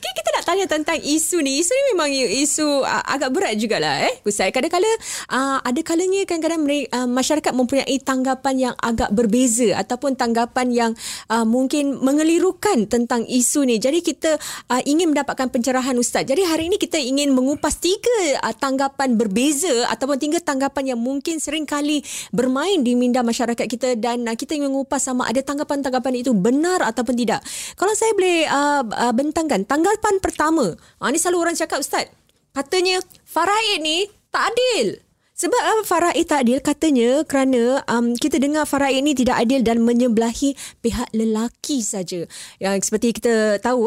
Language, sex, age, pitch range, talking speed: Malay, female, 20-39, 235-305 Hz, 150 wpm